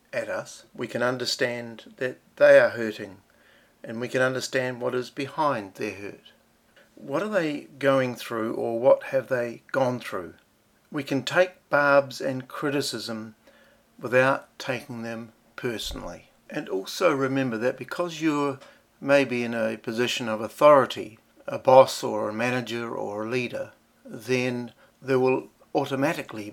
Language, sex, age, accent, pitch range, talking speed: English, male, 60-79, Australian, 115-140 Hz, 145 wpm